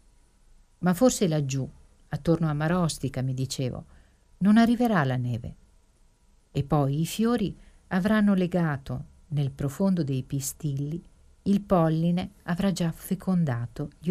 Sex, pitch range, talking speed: female, 135-180 Hz, 120 wpm